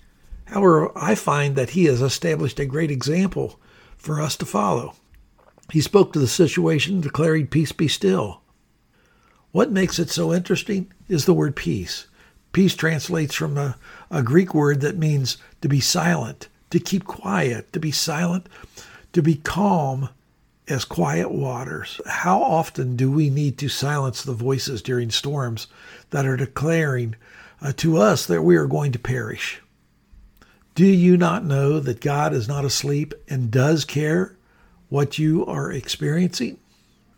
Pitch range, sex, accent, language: 135-170 Hz, male, American, English